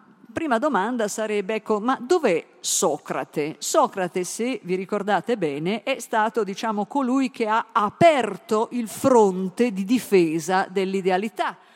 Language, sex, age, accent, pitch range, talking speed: Italian, female, 50-69, native, 180-230 Hz, 115 wpm